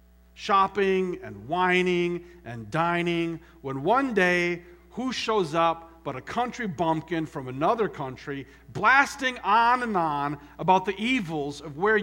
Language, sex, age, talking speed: English, male, 50-69, 135 wpm